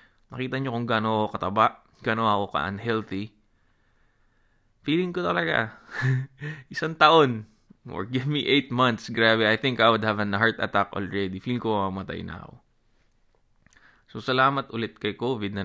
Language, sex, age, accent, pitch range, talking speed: Filipino, male, 20-39, native, 105-125 Hz, 150 wpm